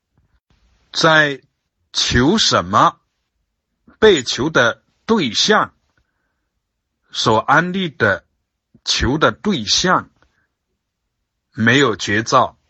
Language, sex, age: Chinese, male, 60-79